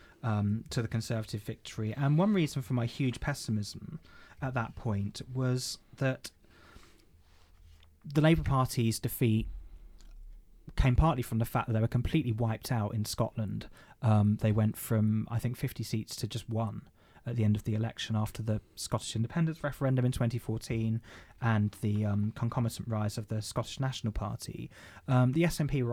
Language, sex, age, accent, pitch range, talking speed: English, male, 20-39, British, 105-125 Hz, 165 wpm